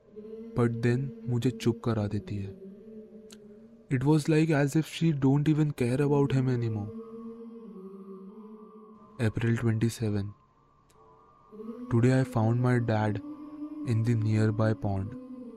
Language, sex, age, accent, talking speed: Hindi, male, 20-39, native, 100 wpm